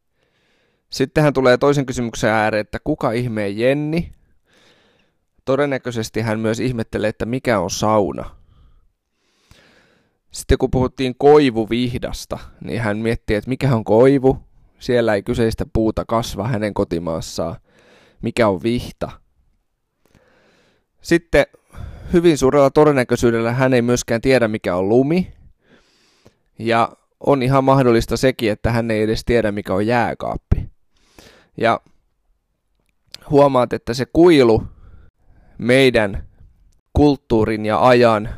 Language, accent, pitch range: Finnish, native, 100-130 Hz